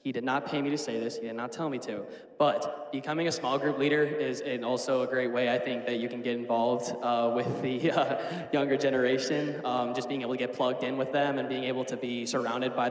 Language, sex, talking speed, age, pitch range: English, male, 255 wpm, 10-29, 120-140 Hz